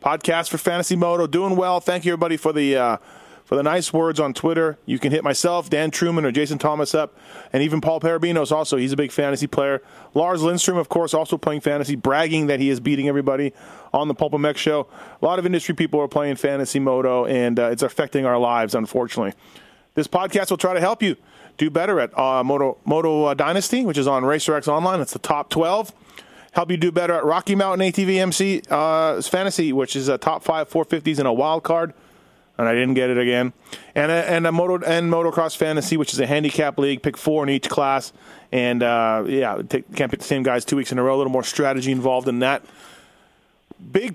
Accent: American